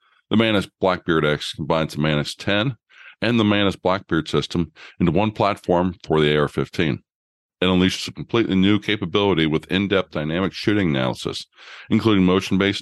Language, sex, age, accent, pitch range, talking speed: English, male, 50-69, American, 80-100 Hz, 150 wpm